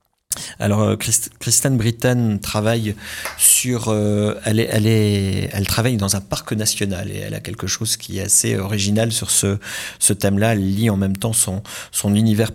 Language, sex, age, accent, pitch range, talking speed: French, male, 40-59, French, 100-115 Hz, 175 wpm